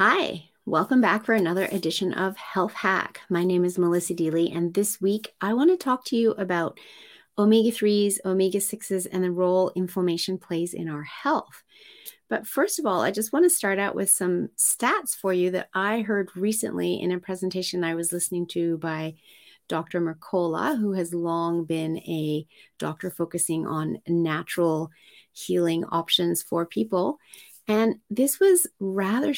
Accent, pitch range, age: American, 175-220 Hz, 30-49